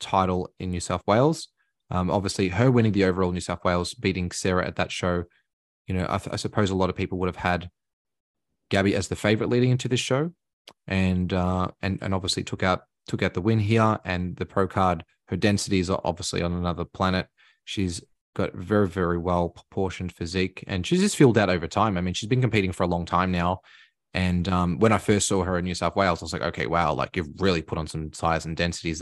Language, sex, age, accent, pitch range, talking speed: English, male, 20-39, Australian, 90-100 Hz, 230 wpm